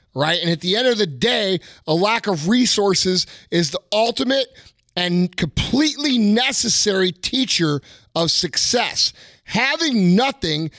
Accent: American